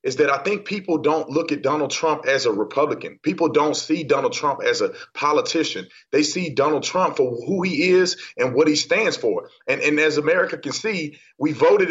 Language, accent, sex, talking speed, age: English, American, male, 210 wpm, 30-49